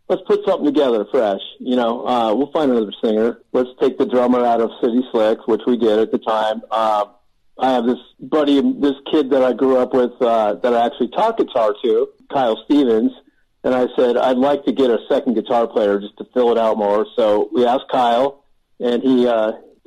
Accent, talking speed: American, 215 wpm